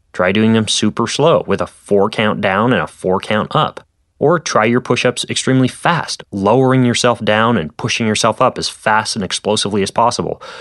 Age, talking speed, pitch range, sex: 20-39, 190 wpm, 100-125 Hz, male